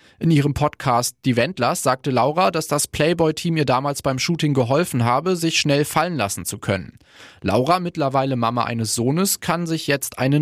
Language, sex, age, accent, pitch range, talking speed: German, male, 20-39, German, 115-155 Hz, 180 wpm